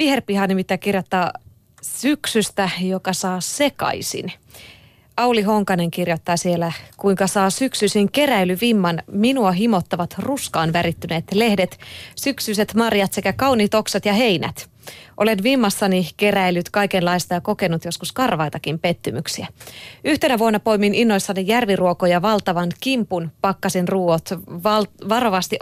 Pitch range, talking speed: 175-220 Hz, 110 wpm